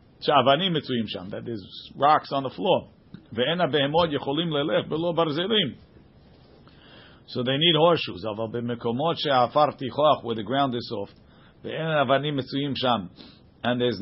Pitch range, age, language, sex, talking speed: 115-145 Hz, 50-69, English, male, 75 wpm